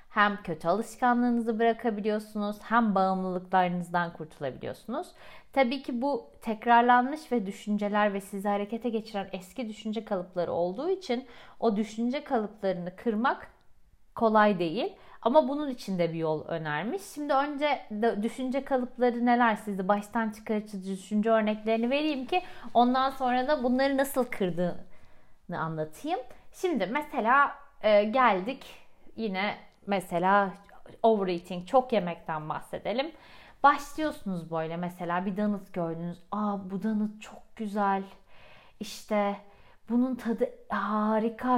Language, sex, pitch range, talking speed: Turkish, female, 195-255 Hz, 115 wpm